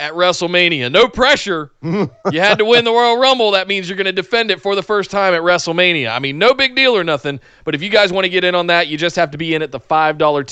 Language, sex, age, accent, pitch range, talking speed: English, male, 30-49, American, 145-190 Hz, 285 wpm